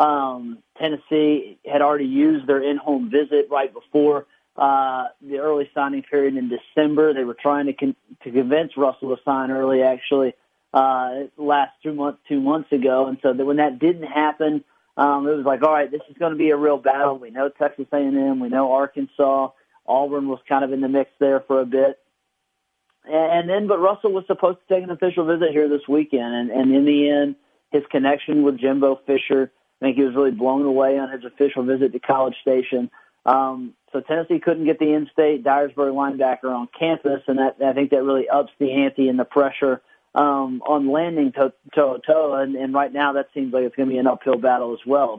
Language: English